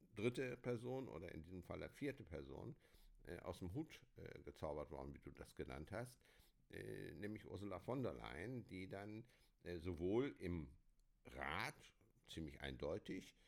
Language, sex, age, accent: German, male, 60-79, German